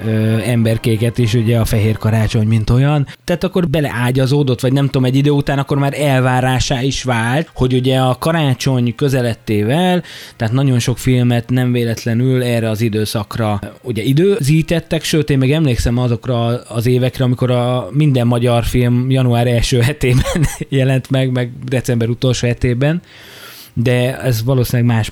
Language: Hungarian